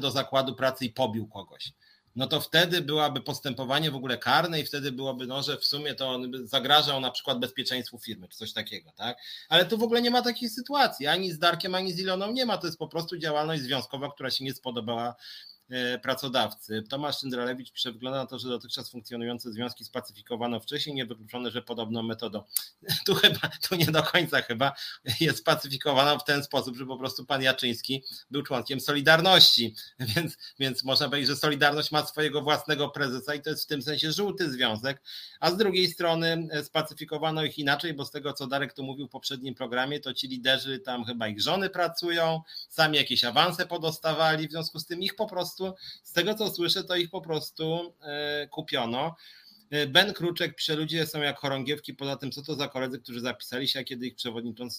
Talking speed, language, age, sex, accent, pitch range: 195 wpm, Polish, 30-49, male, native, 120-155 Hz